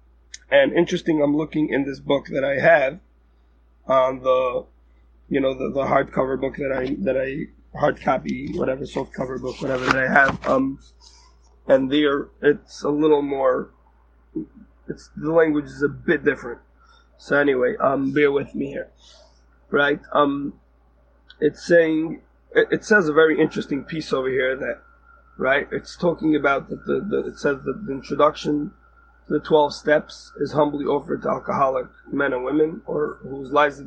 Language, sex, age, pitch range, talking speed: English, male, 20-39, 130-155 Hz, 165 wpm